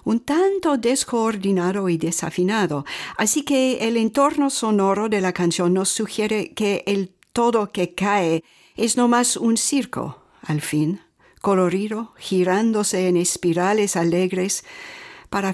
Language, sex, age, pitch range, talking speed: English, female, 50-69, 175-220 Hz, 125 wpm